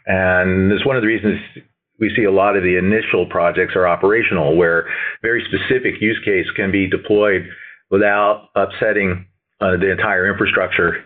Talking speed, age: 165 wpm, 40-59